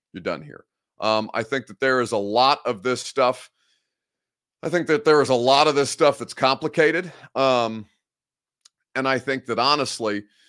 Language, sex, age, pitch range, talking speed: English, male, 40-59, 120-150 Hz, 175 wpm